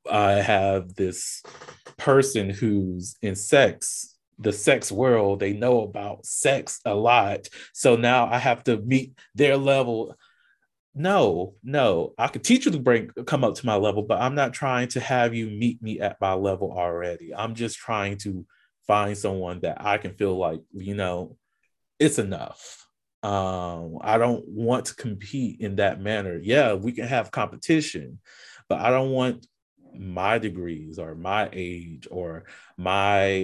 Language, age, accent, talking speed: English, 30-49, American, 160 wpm